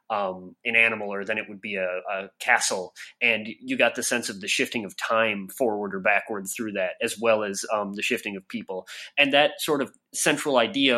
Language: English